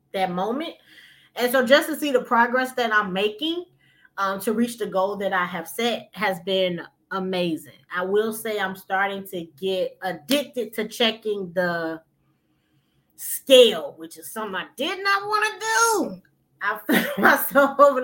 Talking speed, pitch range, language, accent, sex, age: 165 wpm, 185-250 Hz, English, American, female, 20-39